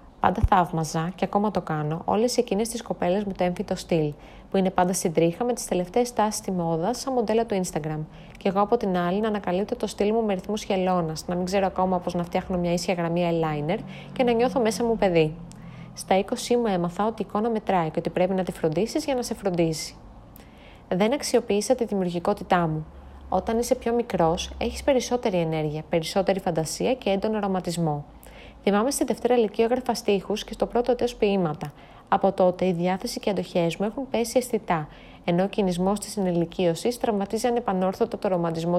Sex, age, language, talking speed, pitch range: female, 30-49, Greek, 195 wpm, 175-225 Hz